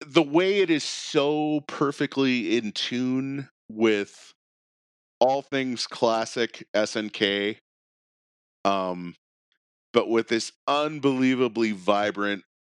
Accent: American